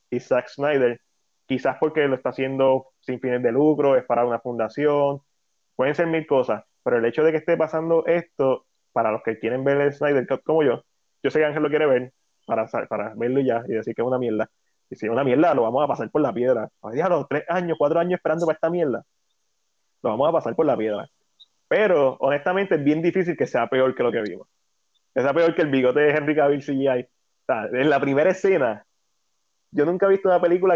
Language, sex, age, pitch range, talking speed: Spanish, male, 20-39, 125-155 Hz, 230 wpm